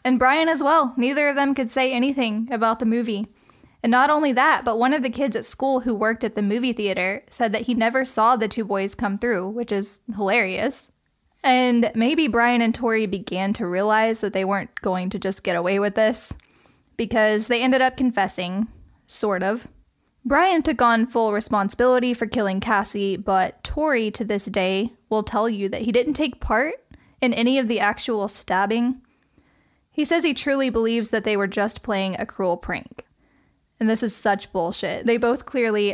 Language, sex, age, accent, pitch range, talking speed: English, female, 10-29, American, 205-255 Hz, 195 wpm